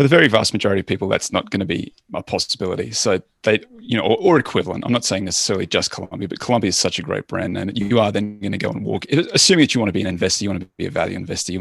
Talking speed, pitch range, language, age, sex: 305 wpm, 95-120 Hz, English, 30-49, male